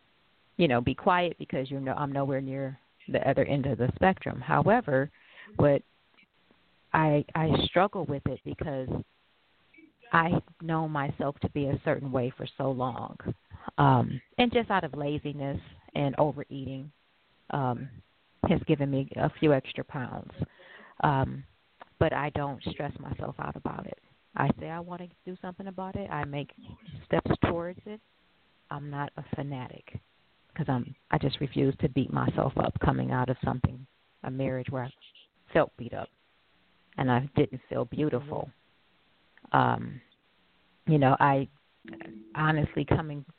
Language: English